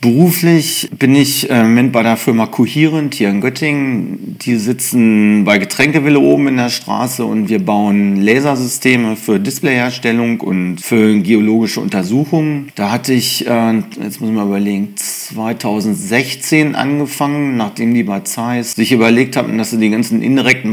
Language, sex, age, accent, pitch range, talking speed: German, male, 40-59, German, 110-130 Hz, 155 wpm